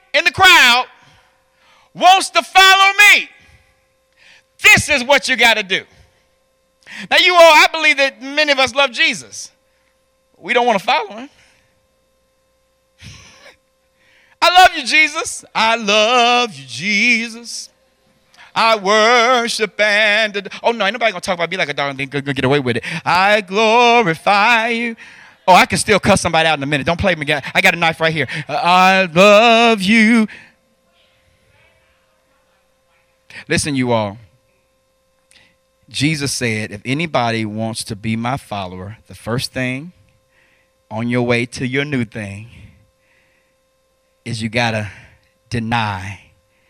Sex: male